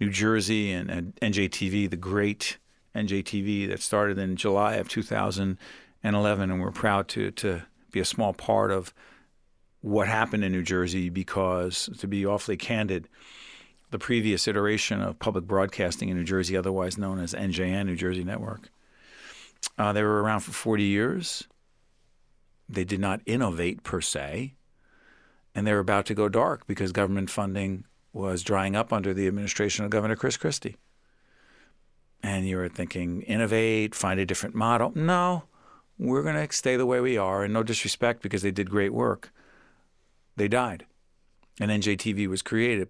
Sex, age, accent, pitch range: male, 50-69, American, 95-110 Hz